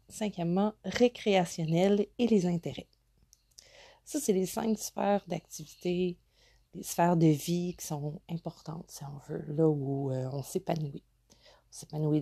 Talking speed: 140 wpm